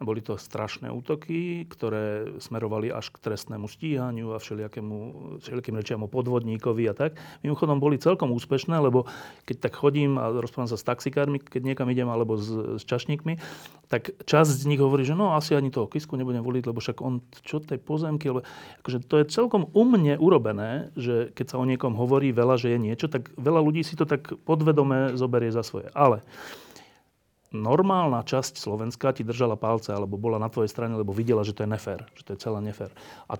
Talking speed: 190 wpm